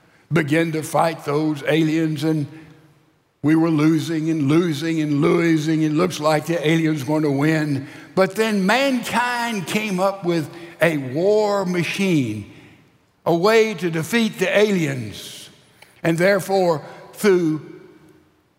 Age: 60-79